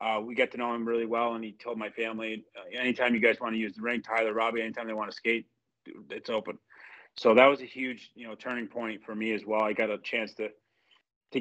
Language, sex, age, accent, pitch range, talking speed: English, male, 30-49, American, 110-125 Hz, 260 wpm